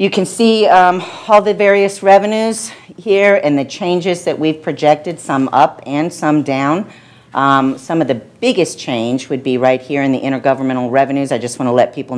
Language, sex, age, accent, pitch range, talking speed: English, female, 50-69, American, 120-150 Hz, 190 wpm